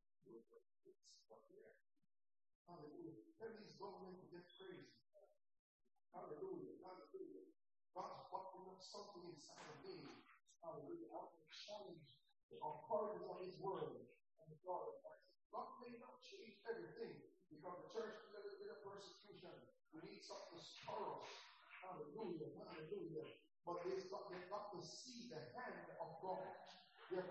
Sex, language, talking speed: male, English, 125 wpm